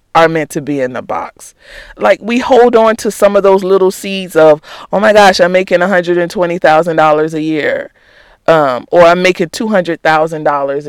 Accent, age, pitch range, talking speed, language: American, 40-59, 155-210 Hz, 170 wpm, English